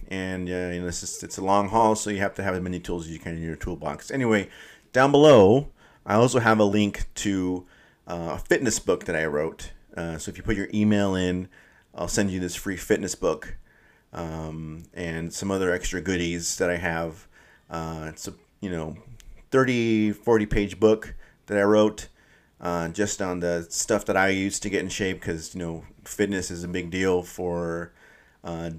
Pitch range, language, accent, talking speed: 85-100 Hz, English, American, 200 wpm